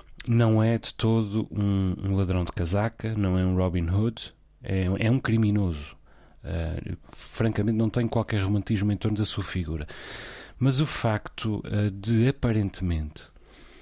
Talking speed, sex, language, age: 135 wpm, male, Portuguese, 30-49